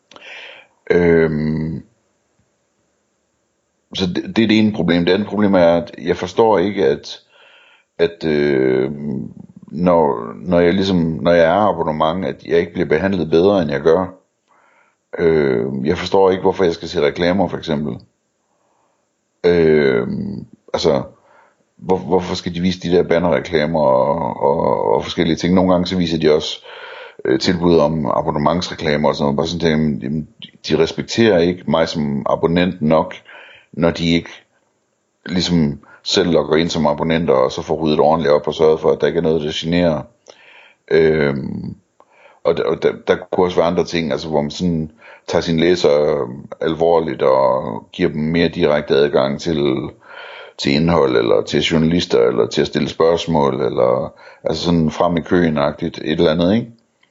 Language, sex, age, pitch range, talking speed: Danish, male, 60-79, 80-115 Hz, 160 wpm